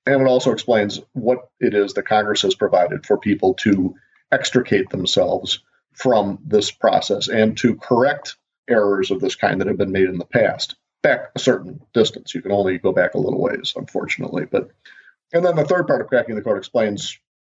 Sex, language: male, English